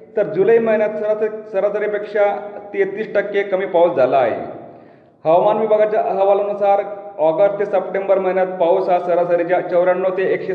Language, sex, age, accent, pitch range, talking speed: Marathi, male, 40-59, native, 170-200 Hz, 130 wpm